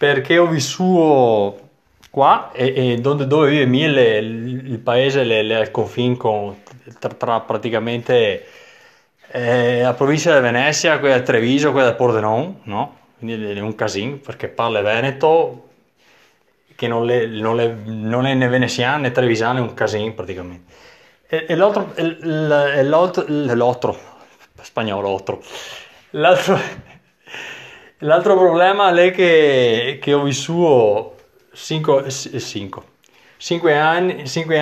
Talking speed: 125 wpm